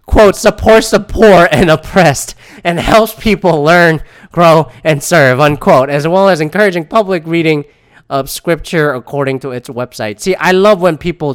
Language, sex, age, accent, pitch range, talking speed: English, male, 20-39, American, 135-215 Hz, 165 wpm